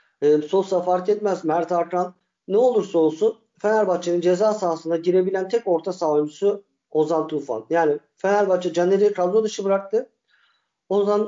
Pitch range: 155-195 Hz